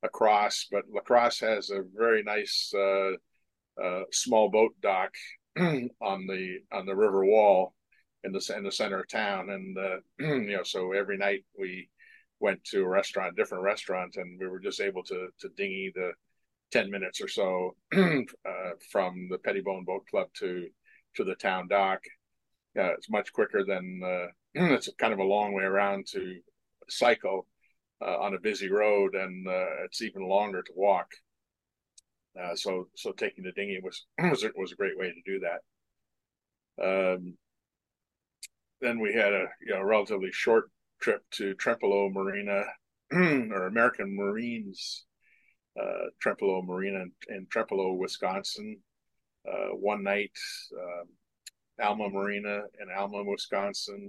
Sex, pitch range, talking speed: male, 95-145 Hz, 150 wpm